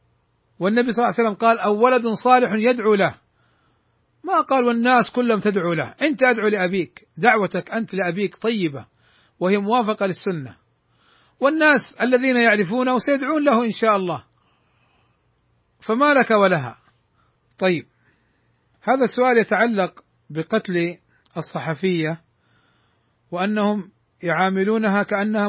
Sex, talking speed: male, 110 wpm